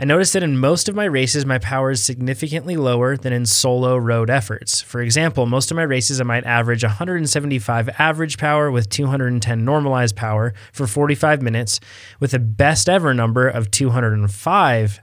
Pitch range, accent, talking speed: 115-145 Hz, American, 175 wpm